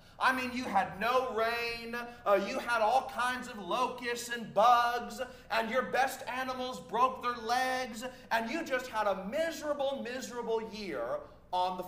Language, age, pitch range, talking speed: English, 40-59, 215-280 Hz, 160 wpm